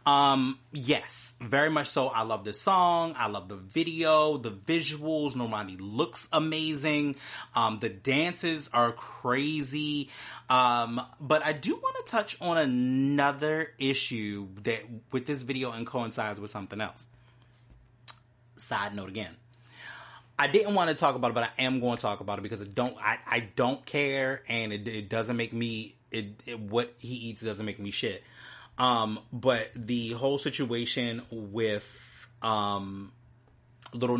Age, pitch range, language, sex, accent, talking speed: 30-49, 115-145 Hz, English, male, American, 160 wpm